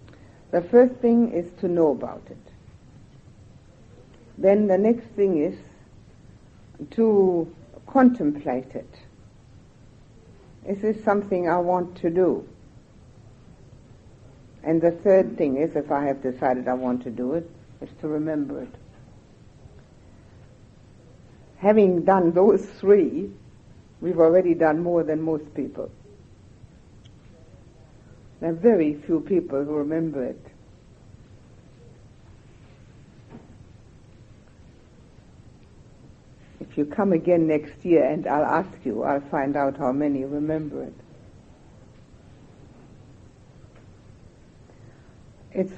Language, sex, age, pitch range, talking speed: English, female, 60-79, 120-180 Hz, 100 wpm